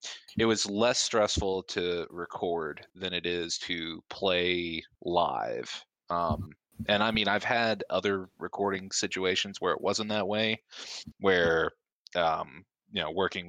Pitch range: 95-105 Hz